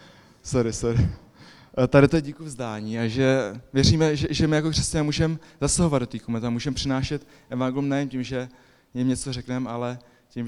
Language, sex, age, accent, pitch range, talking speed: Czech, male, 20-39, native, 115-130 Hz, 170 wpm